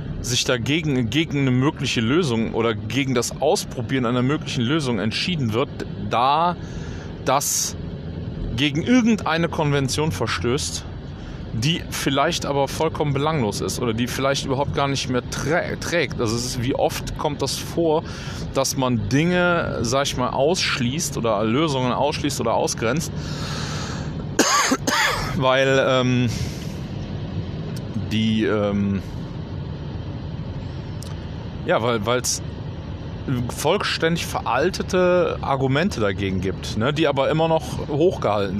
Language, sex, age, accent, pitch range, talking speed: German, male, 30-49, German, 115-145 Hz, 115 wpm